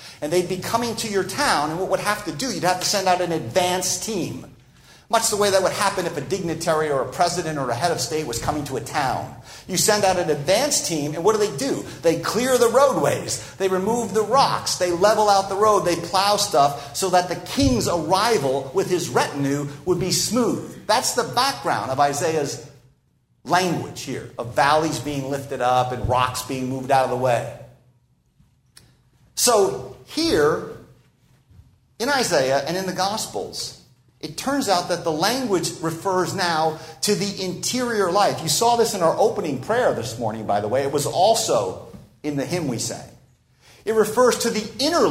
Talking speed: 195 wpm